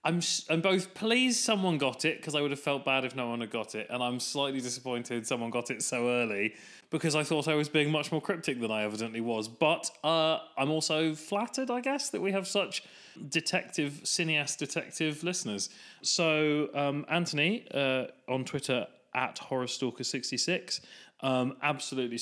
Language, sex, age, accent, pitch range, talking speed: English, male, 30-49, British, 115-155 Hz, 180 wpm